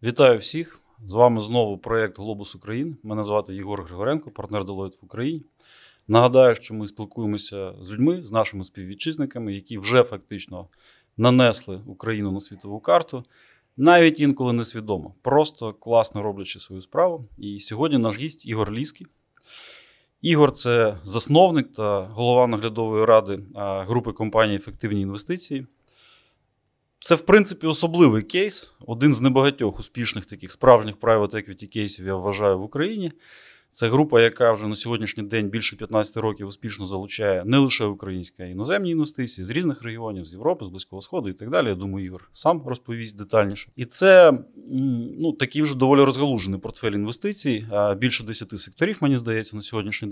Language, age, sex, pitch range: Ukrainian, 20-39, male, 100-135 Hz